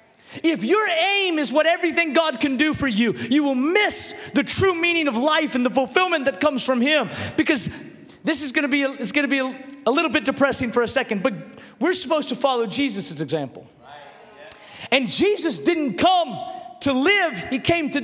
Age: 30-49